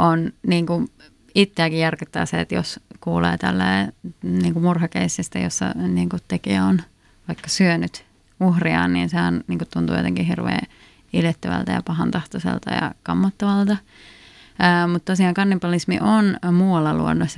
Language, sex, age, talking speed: Finnish, female, 30-49, 120 wpm